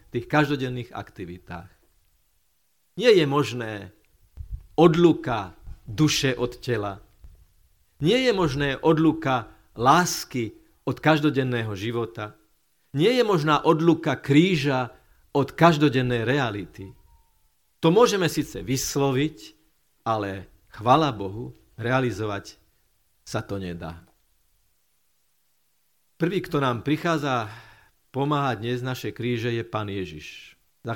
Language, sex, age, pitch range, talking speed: Slovak, male, 50-69, 105-150 Hz, 95 wpm